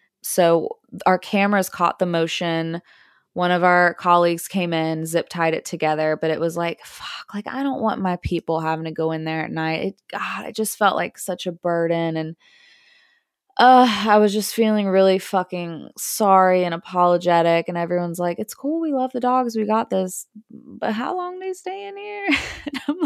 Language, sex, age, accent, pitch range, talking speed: English, female, 20-39, American, 170-245 Hz, 200 wpm